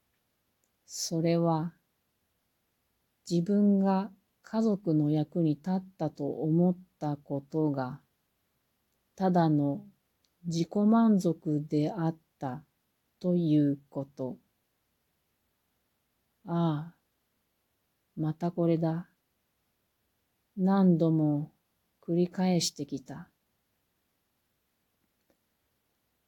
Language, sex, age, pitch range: Japanese, female, 40-59, 145-185 Hz